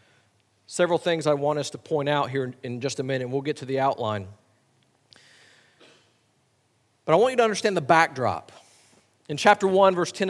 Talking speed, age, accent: 185 wpm, 40-59, American